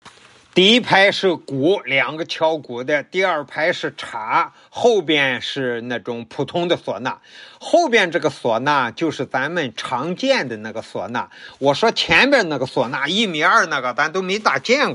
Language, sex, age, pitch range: Chinese, male, 50-69, 135-225 Hz